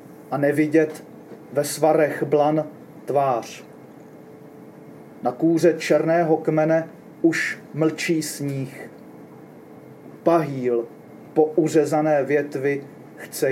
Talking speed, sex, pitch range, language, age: 80 wpm, male, 145-170 Hz, Czech, 30-49